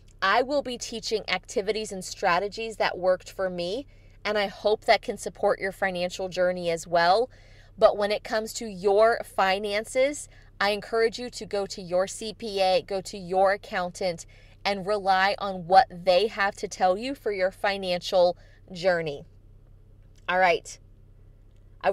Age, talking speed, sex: 20-39, 155 wpm, female